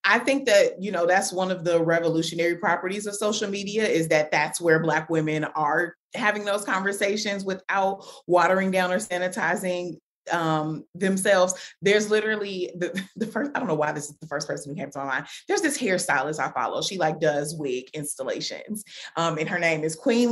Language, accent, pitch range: English, American, 165-220 Hz